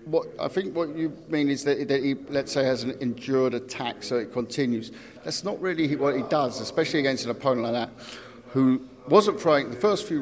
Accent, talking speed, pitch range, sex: British, 215 wpm, 115-135 Hz, male